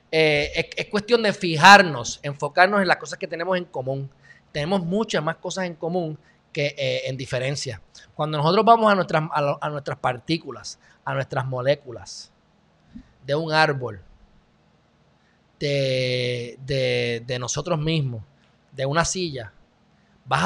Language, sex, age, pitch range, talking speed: Spanish, male, 20-39, 135-190 Hz, 145 wpm